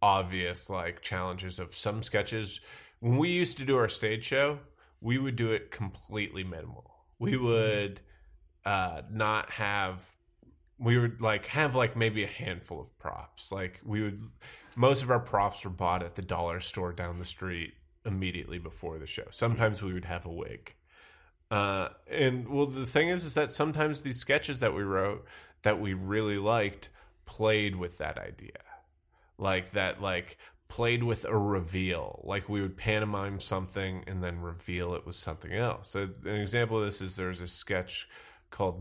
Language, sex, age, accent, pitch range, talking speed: English, male, 20-39, American, 90-110 Hz, 175 wpm